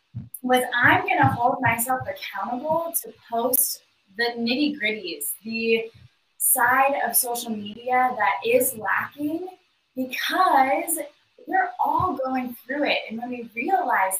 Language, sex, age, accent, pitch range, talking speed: English, female, 10-29, American, 215-270 Hz, 125 wpm